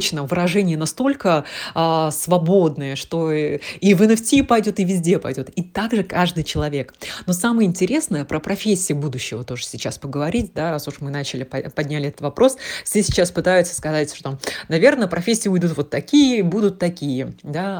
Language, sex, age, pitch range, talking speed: Russian, female, 20-39, 150-200 Hz, 160 wpm